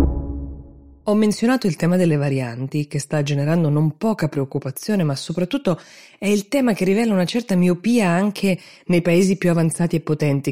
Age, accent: 20-39, native